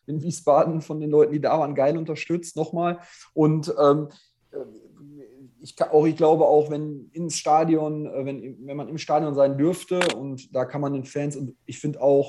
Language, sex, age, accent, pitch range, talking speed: German, male, 30-49, German, 140-165 Hz, 190 wpm